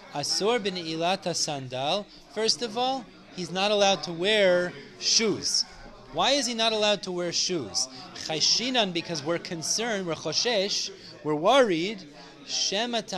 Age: 30-49